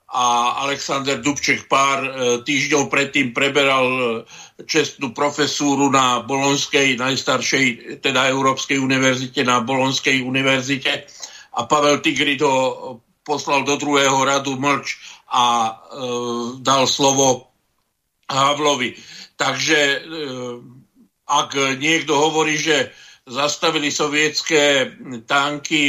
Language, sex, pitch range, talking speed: Slovak, male, 135-150 Hz, 95 wpm